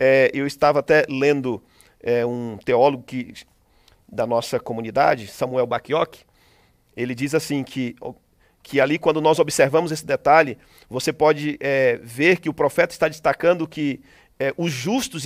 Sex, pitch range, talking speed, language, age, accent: male, 130-160 Hz, 150 wpm, Portuguese, 50-69, Brazilian